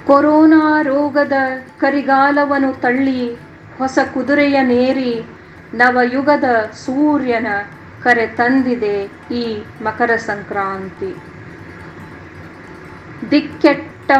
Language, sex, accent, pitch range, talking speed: Kannada, female, native, 230-280 Hz, 60 wpm